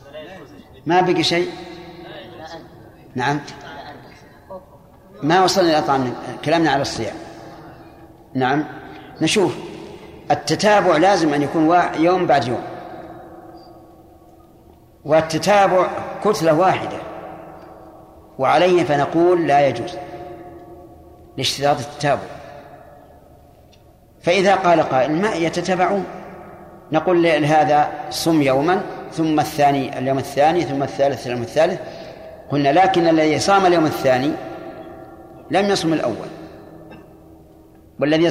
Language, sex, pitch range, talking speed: Arabic, male, 140-180 Hz, 90 wpm